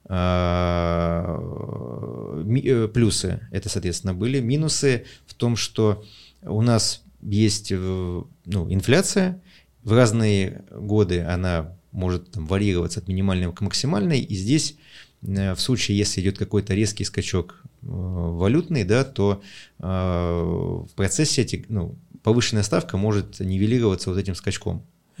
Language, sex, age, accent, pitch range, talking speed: Russian, male, 30-49, native, 95-120 Hz, 110 wpm